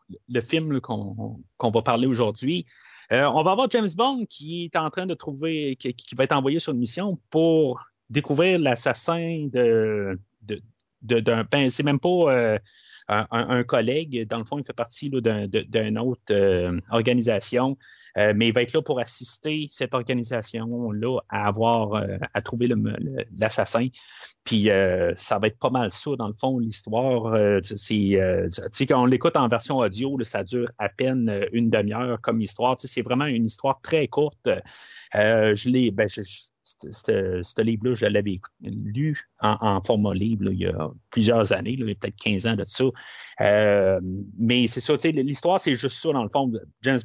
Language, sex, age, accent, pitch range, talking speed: French, male, 30-49, Canadian, 105-135 Hz, 180 wpm